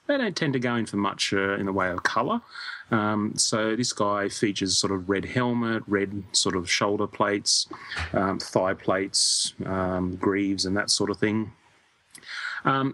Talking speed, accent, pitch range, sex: 180 wpm, Australian, 95-115 Hz, male